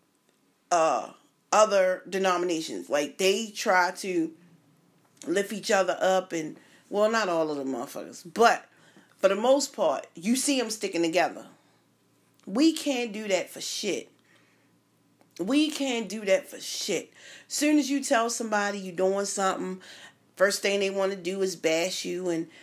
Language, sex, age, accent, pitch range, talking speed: English, female, 40-59, American, 175-215 Hz, 155 wpm